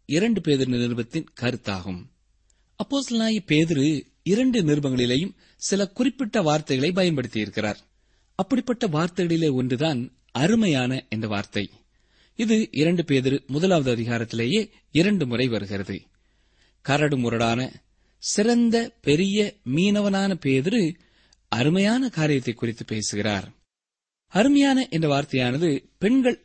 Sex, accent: male, native